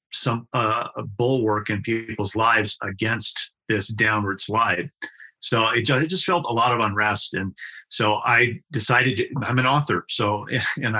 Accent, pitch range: American, 105-125 Hz